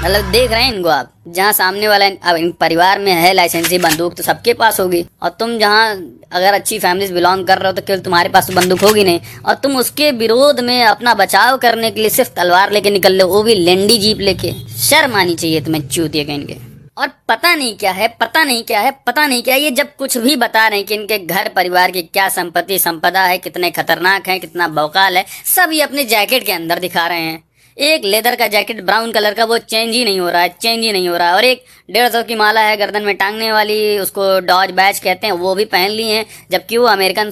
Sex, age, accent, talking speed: male, 20-39, native, 245 wpm